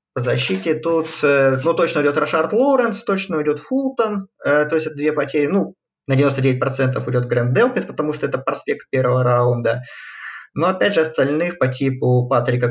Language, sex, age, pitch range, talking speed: Russian, male, 20-39, 125-160 Hz, 170 wpm